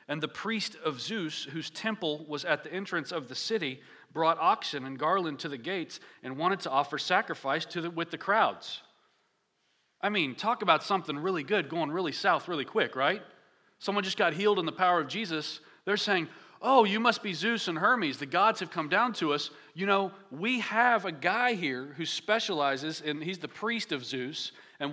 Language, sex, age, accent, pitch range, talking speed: English, male, 40-59, American, 150-205 Hz, 205 wpm